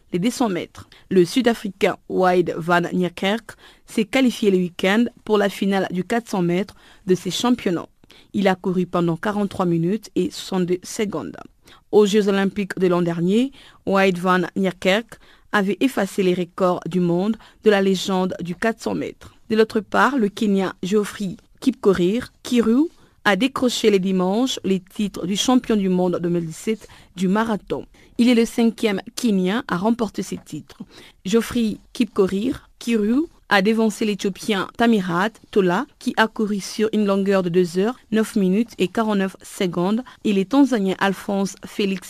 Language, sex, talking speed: French, female, 155 wpm